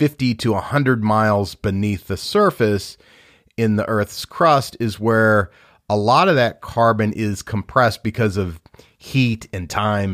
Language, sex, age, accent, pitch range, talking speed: English, male, 40-59, American, 100-120 Hz, 150 wpm